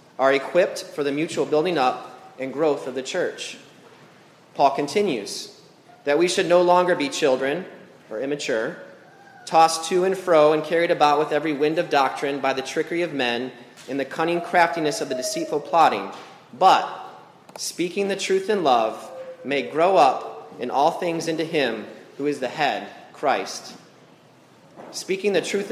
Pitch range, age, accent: 145-180 Hz, 30-49, American